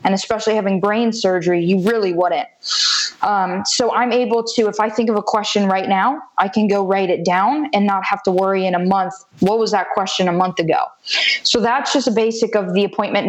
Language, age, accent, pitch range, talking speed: English, 20-39, American, 190-220 Hz, 225 wpm